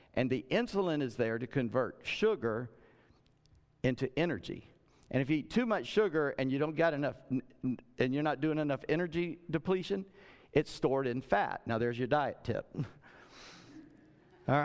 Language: English